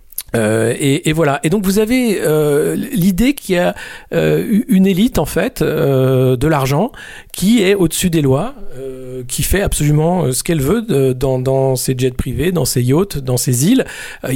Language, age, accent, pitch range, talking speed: French, 40-59, French, 130-170 Hz, 190 wpm